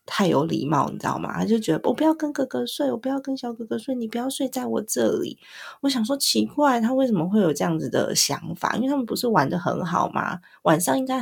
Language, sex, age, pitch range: Chinese, female, 20-39, 165-245 Hz